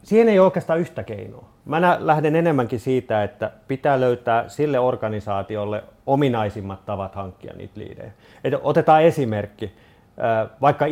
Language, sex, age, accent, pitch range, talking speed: Finnish, male, 30-49, native, 105-135 Hz, 125 wpm